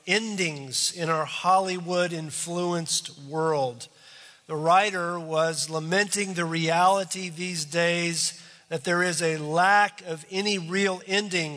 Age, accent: 50-69, American